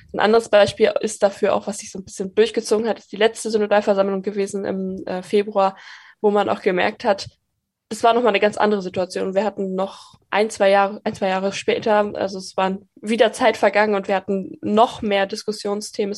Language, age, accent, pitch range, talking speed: English, 20-39, German, 195-225 Hz, 200 wpm